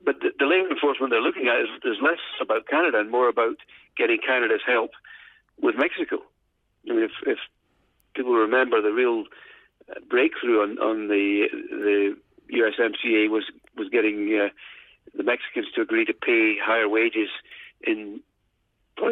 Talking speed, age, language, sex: 155 wpm, 50-69, English, male